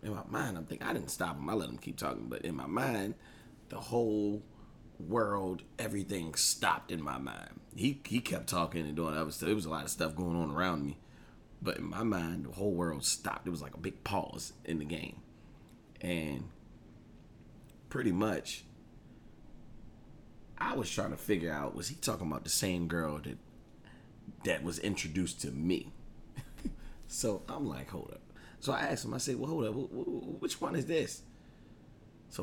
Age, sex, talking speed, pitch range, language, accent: 30-49, male, 190 wpm, 85-125 Hz, English, American